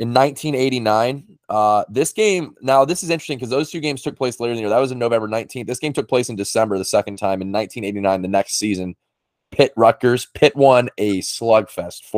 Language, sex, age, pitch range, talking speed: English, male, 20-39, 100-130 Hz, 215 wpm